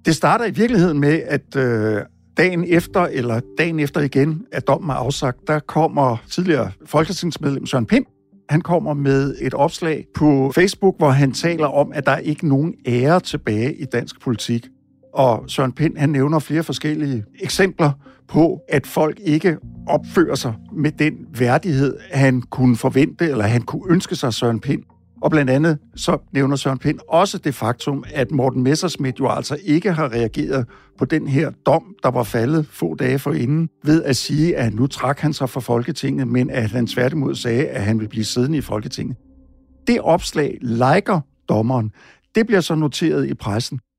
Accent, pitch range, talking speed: native, 130-165 Hz, 175 wpm